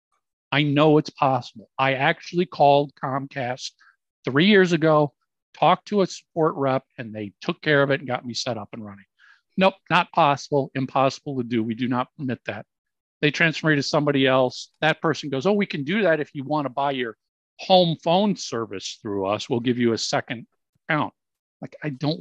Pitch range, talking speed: 130-170 Hz, 200 wpm